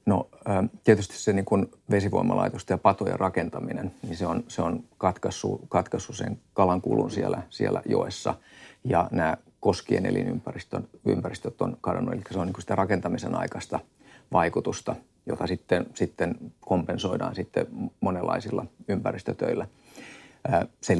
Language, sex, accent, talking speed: Finnish, male, native, 120 wpm